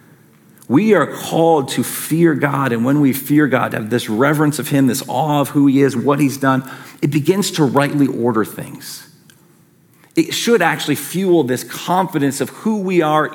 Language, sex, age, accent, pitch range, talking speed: English, male, 40-59, American, 140-175 Hz, 185 wpm